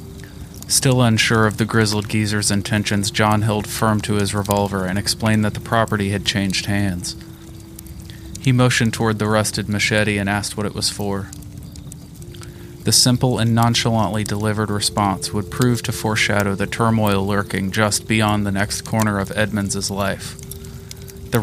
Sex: male